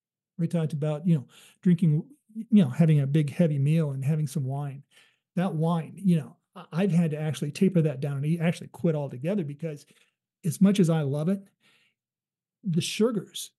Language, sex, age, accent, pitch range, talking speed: English, male, 50-69, American, 155-185 Hz, 180 wpm